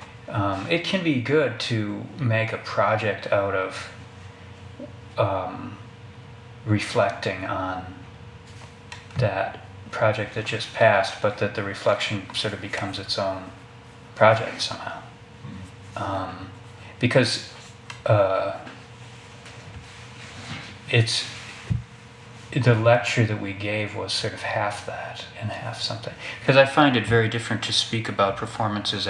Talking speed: 120 wpm